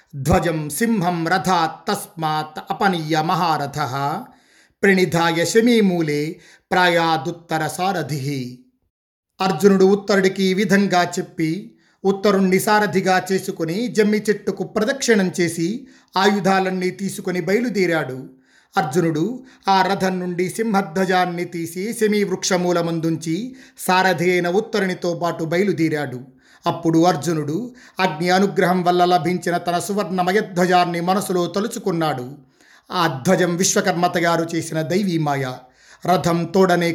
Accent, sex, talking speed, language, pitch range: native, male, 90 wpm, Telugu, 165-190 Hz